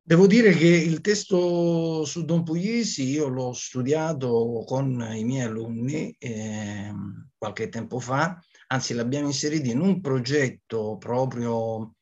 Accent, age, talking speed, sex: native, 50-69, 130 wpm, male